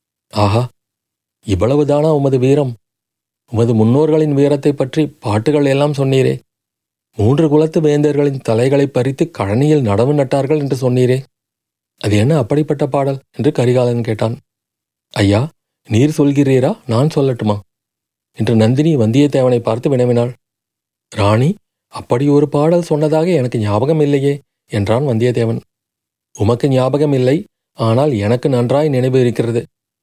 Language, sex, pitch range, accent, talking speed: Tamil, male, 115-150 Hz, native, 110 wpm